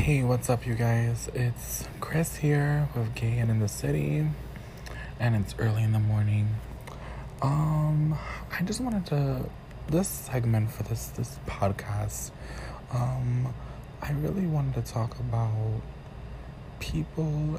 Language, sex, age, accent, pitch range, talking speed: English, male, 20-39, American, 110-135 Hz, 135 wpm